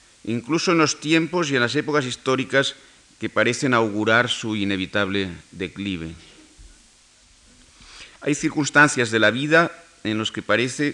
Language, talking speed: Spanish, 130 wpm